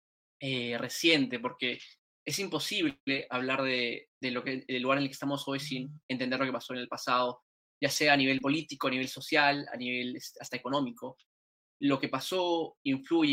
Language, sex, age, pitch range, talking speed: Spanish, male, 10-29, 125-145 Hz, 185 wpm